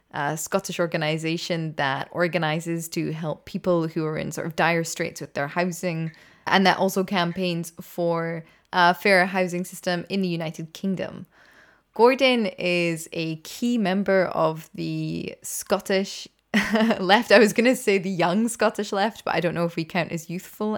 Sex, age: female, 20-39